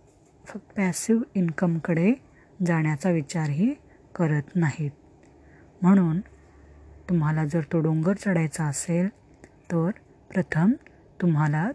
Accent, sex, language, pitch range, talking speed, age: native, female, Marathi, 155-185 Hz, 85 wpm, 30-49